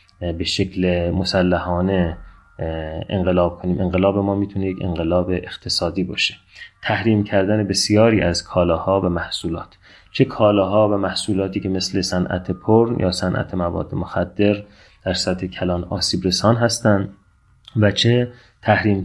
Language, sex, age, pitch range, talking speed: Persian, male, 30-49, 90-105 Hz, 125 wpm